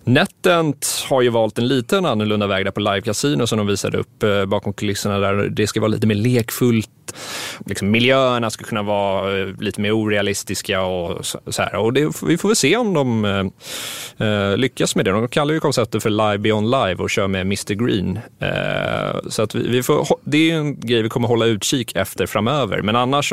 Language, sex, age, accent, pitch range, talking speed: Swedish, male, 30-49, native, 100-125 Hz, 205 wpm